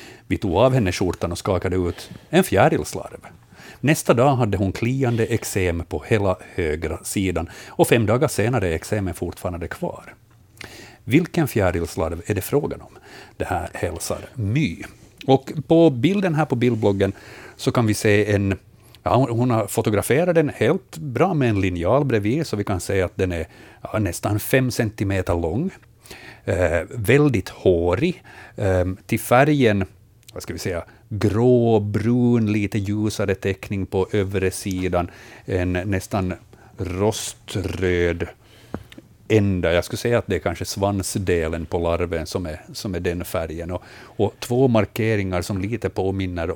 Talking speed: 150 wpm